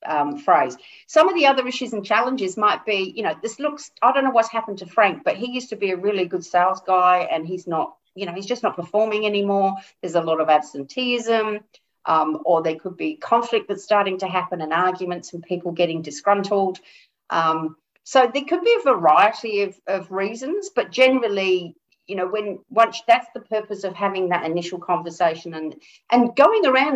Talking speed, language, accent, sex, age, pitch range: 205 wpm, English, Australian, female, 50-69, 175-230 Hz